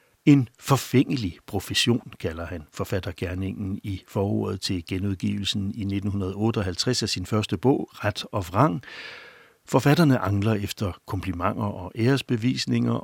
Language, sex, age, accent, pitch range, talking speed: Danish, male, 60-79, native, 95-120 Hz, 115 wpm